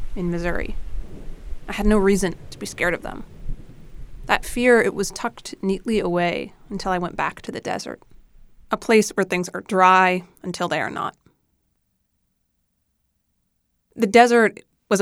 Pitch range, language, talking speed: 180-210 Hz, English, 150 wpm